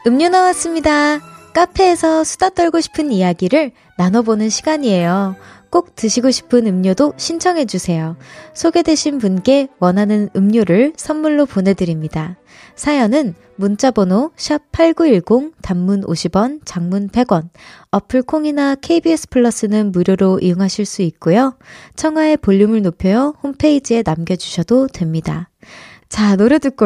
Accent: native